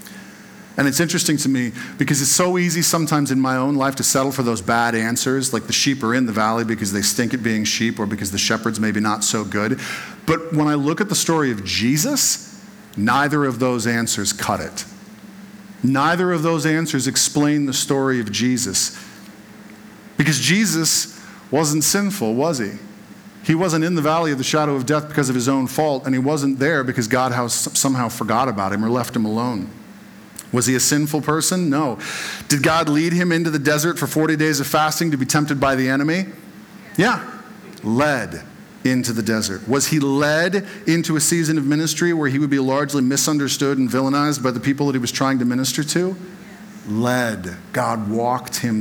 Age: 50-69